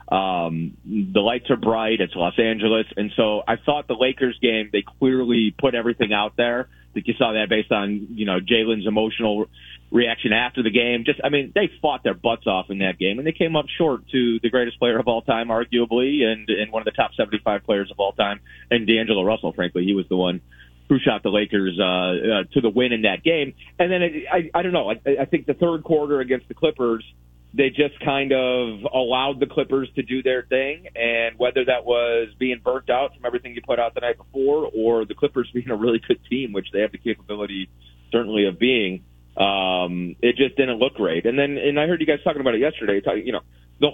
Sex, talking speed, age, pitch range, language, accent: male, 230 wpm, 30-49, 100-130 Hz, English, American